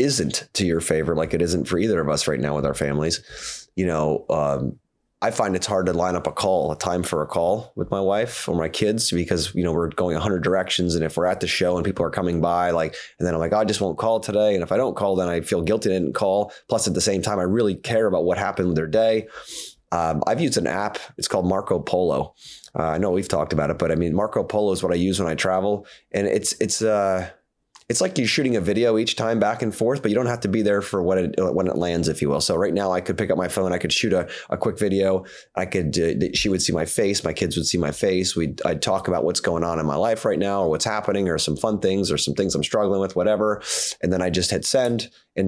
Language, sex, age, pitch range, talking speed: English, male, 30-49, 85-100 Hz, 285 wpm